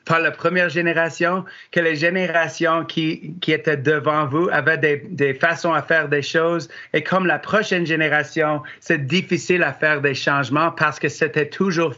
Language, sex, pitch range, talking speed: French, male, 145-170 Hz, 175 wpm